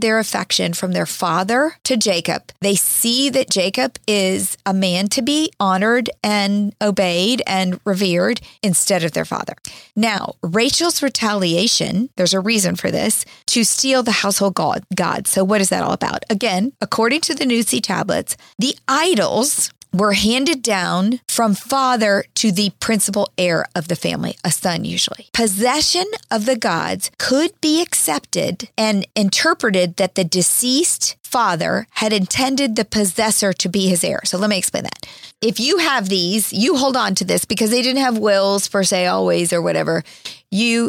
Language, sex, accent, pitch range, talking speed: English, female, American, 190-240 Hz, 165 wpm